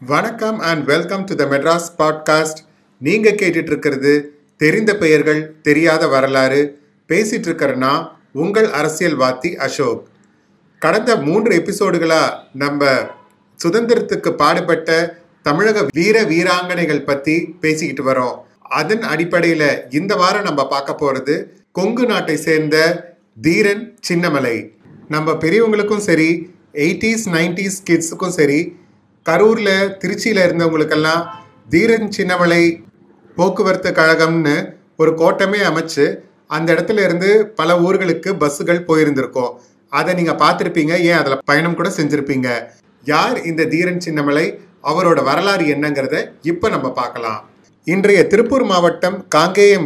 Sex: male